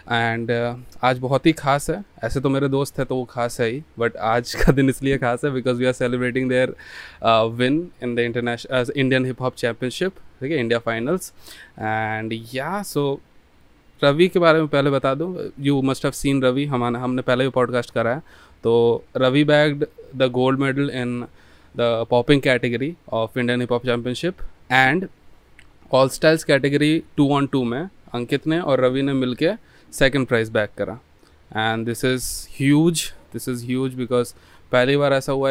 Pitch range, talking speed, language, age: 120-135 Hz, 180 wpm, Hindi, 20-39